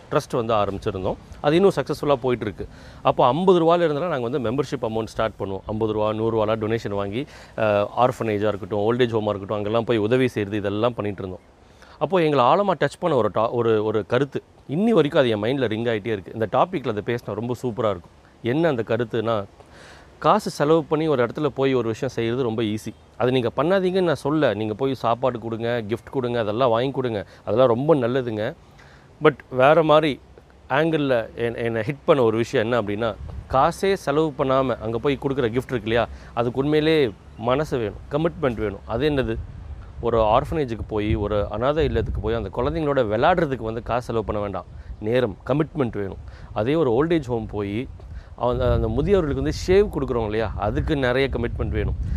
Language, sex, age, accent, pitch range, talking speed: Tamil, male, 30-49, native, 105-140 Hz, 170 wpm